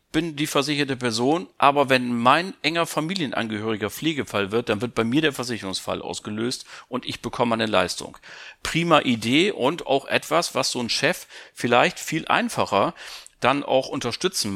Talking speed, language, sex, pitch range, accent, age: 155 wpm, German, male, 105-135 Hz, German, 40-59